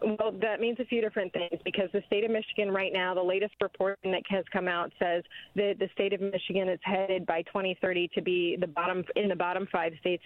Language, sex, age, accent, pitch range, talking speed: English, female, 30-49, American, 180-220 Hz, 235 wpm